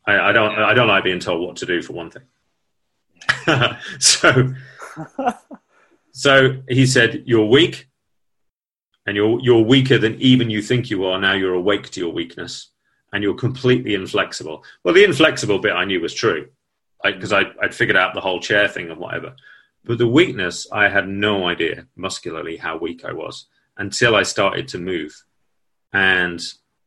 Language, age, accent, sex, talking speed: English, 30-49, British, male, 175 wpm